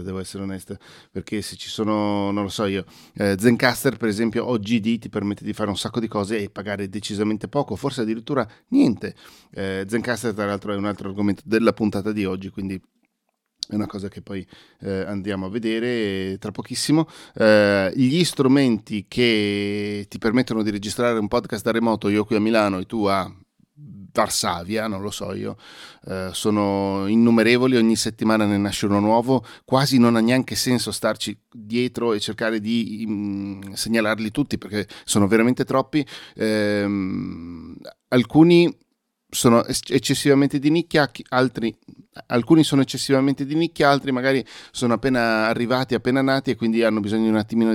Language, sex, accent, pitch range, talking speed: Italian, male, native, 100-125 Hz, 155 wpm